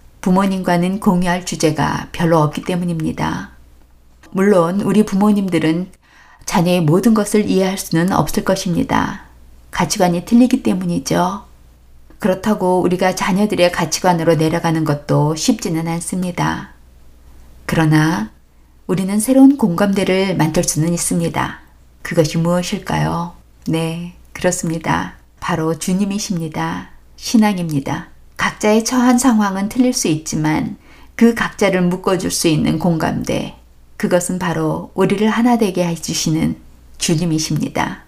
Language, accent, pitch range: Korean, native, 160-200 Hz